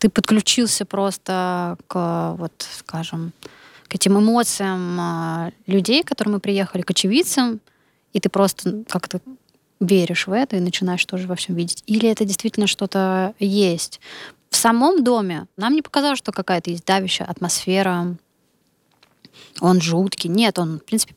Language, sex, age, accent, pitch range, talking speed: Russian, female, 20-39, native, 175-205 Hz, 140 wpm